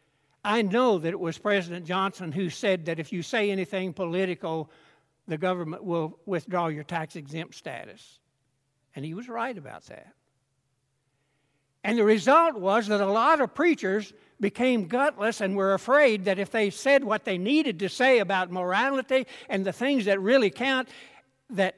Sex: male